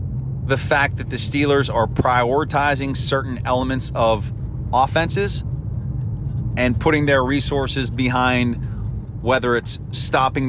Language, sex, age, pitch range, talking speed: English, male, 30-49, 120-135 Hz, 110 wpm